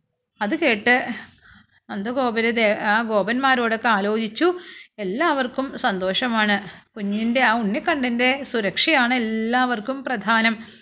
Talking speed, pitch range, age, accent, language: 85 wpm, 200-235 Hz, 30-49, native, Malayalam